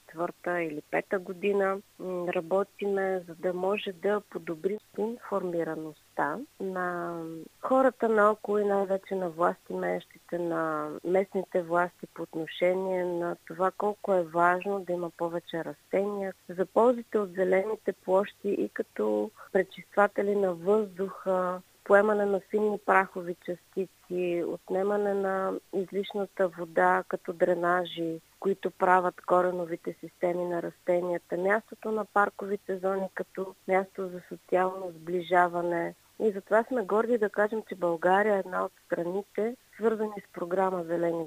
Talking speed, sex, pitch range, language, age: 125 wpm, female, 175-205 Hz, Bulgarian, 30-49